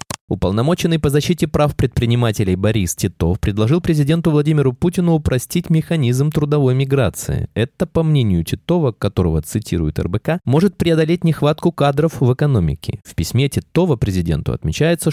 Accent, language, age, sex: native, Russian, 20-39, male